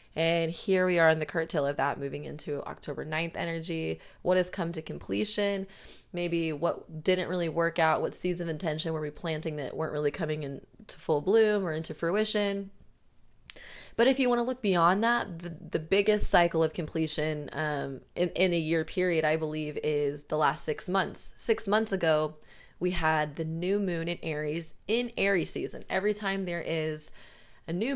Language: English